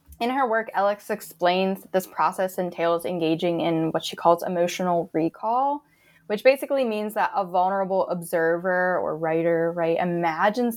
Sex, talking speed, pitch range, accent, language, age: female, 150 wpm, 170-210 Hz, American, English, 10-29